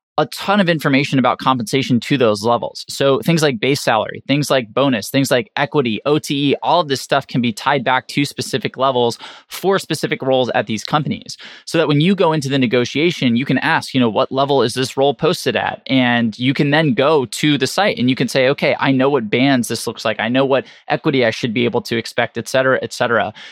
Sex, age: male, 20-39